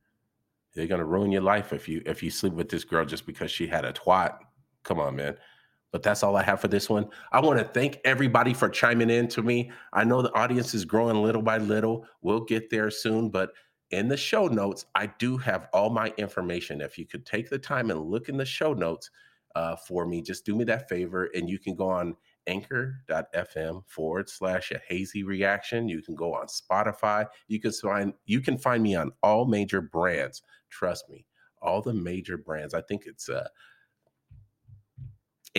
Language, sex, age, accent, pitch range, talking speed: English, male, 40-59, American, 95-115 Hz, 200 wpm